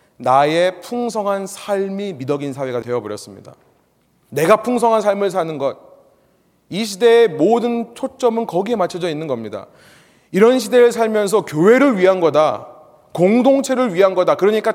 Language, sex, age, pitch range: Korean, male, 30-49, 160-230 Hz